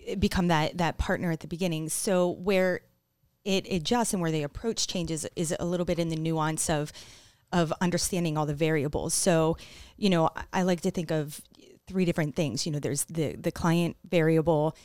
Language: English